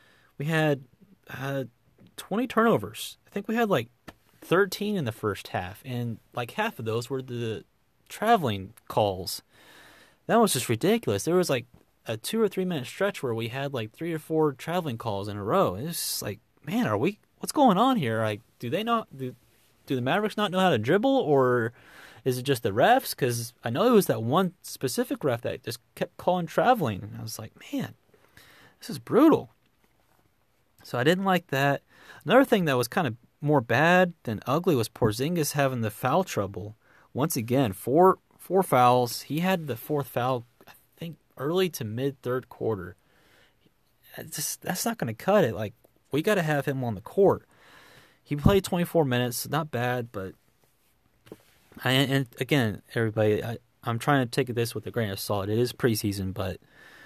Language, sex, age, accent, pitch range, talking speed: English, male, 30-49, American, 115-170 Hz, 190 wpm